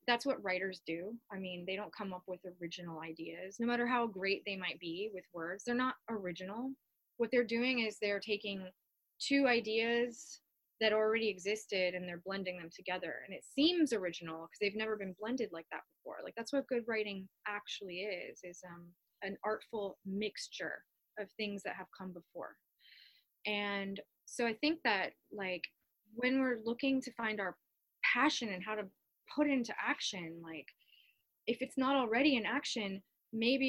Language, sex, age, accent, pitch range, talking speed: English, female, 20-39, American, 185-235 Hz, 175 wpm